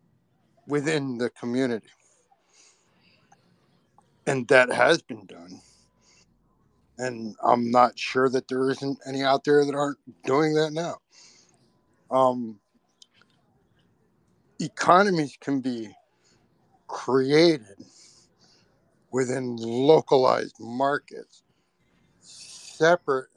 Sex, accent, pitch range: male, American, 100-135 Hz